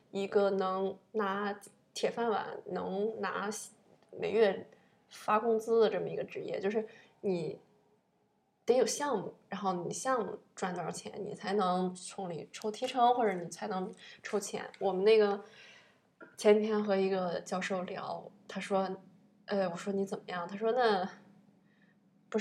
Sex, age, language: female, 20-39, English